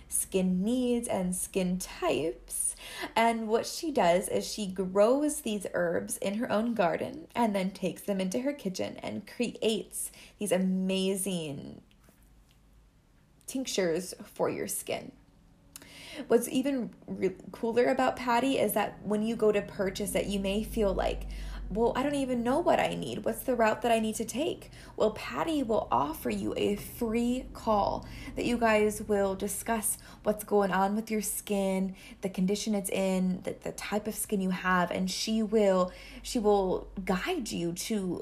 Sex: female